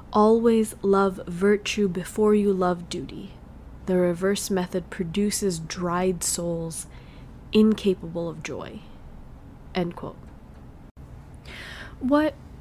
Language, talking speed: English, 90 wpm